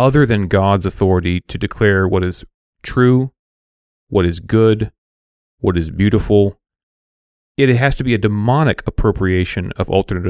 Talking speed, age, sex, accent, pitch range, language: 140 wpm, 40-59, male, American, 90-120 Hz, English